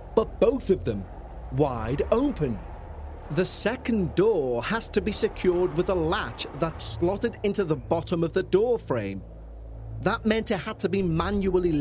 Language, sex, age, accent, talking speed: English, male, 30-49, British, 165 wpm